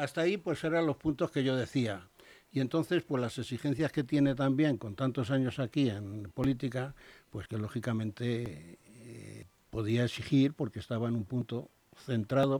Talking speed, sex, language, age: 165 wpm, male, Spanish, 60-79